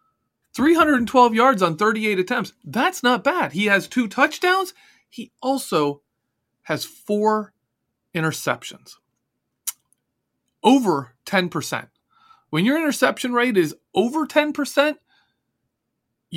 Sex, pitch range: male, 155-245 Hz